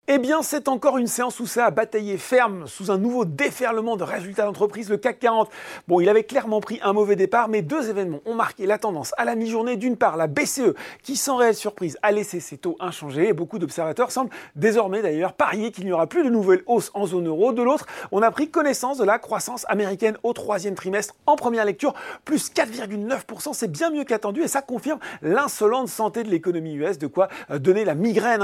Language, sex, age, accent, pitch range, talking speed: French, male, 40-59, French, 190-255 Hz, 220 wpm